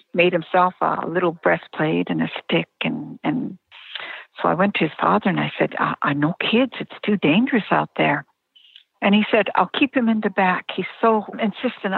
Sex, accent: female, American